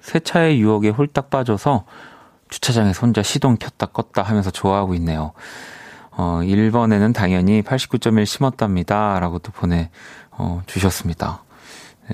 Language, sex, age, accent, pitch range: Korean, male, 30-49, native, 95-130 Hz